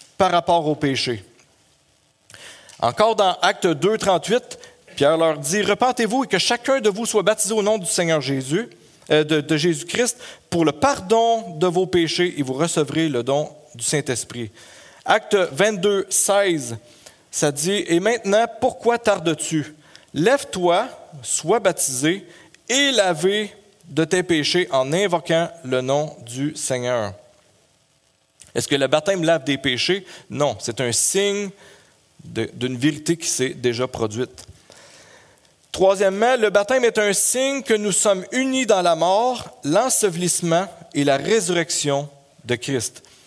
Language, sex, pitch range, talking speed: French, male, 145-205 Hz, 145 wpm